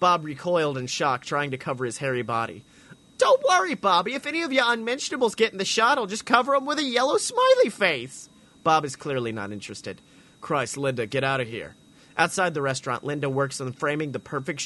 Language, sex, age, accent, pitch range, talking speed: English, male, 30-49, American, 130-195 Hz, 210 wpm